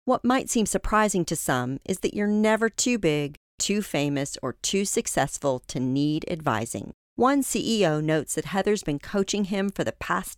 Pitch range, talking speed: 150-215 Hz, 180 wpm